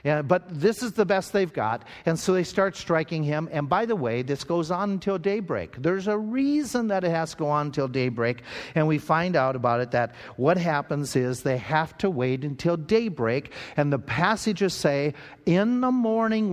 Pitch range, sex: 135-185 Hz, male